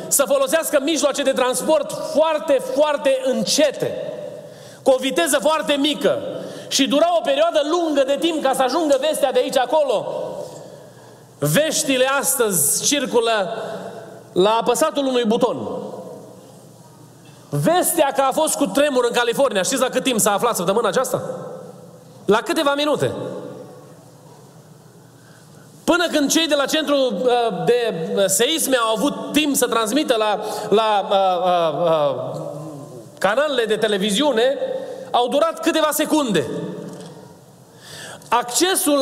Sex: male